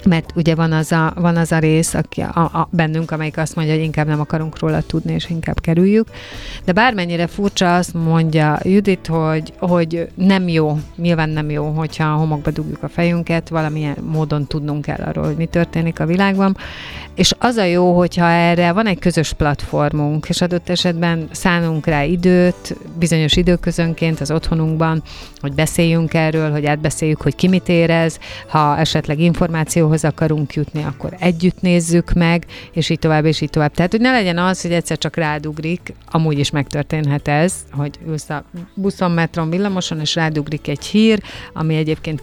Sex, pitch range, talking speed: female, 155-175 Hz, 180 wpm